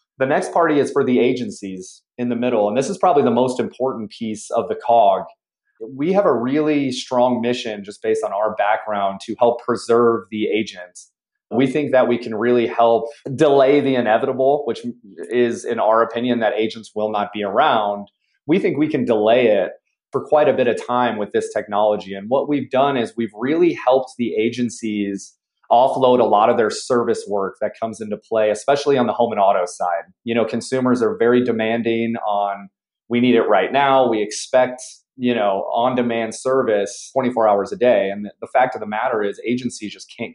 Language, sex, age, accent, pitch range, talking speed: English, male, 30-49, American, 105-125 Hz, 200 wpm